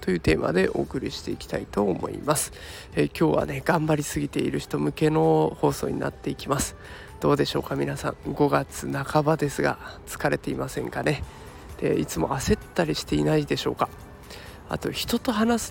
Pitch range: 135-180 Hz